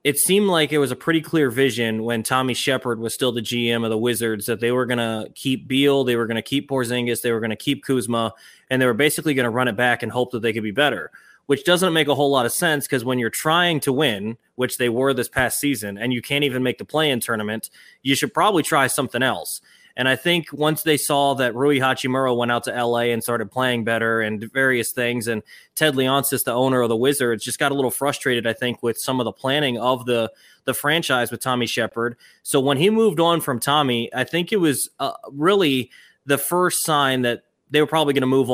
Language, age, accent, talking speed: English, 20-39, American, 245 wpm